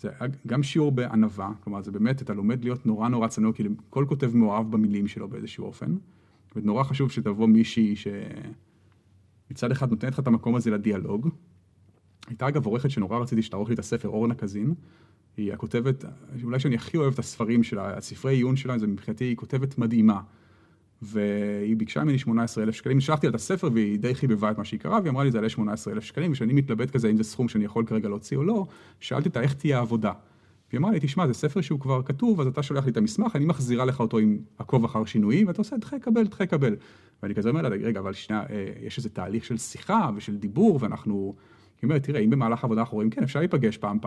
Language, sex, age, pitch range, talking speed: Hebrew, male, 30-49, 110-145 Hz, 195 wpm